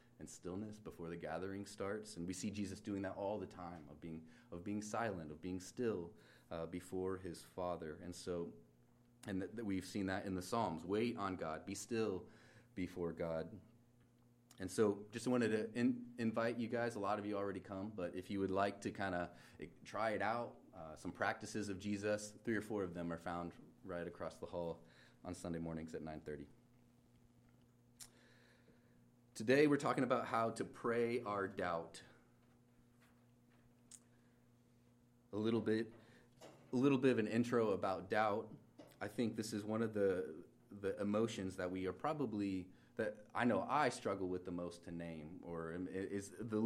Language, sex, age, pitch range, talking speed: English, male, 30-49, 90-120 Hz, 180 wpm